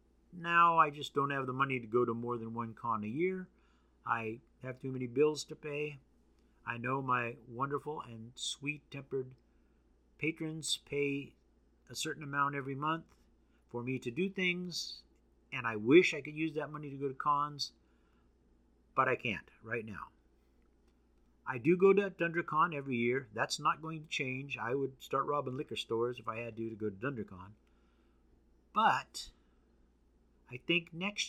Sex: male